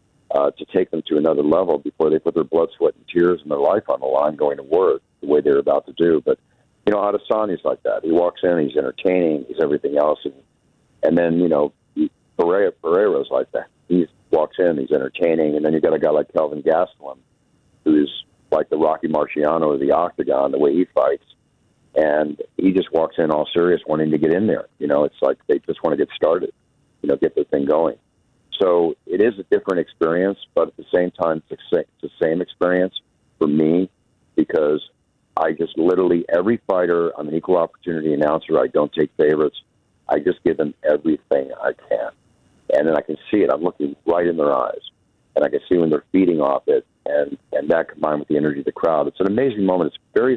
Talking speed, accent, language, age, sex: 220 wpm, American, English, 50-69, male